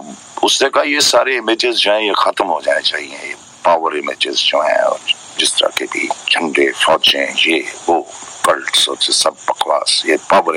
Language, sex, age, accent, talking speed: Hindi, male, 50-69, native, 70 wpm